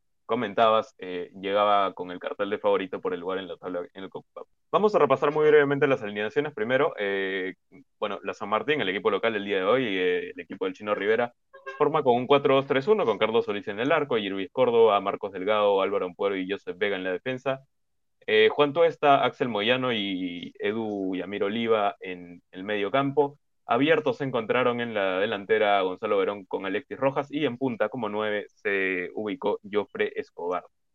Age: 20-39